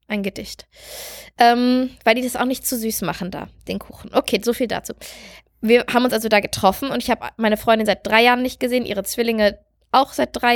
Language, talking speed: German, 220 wpm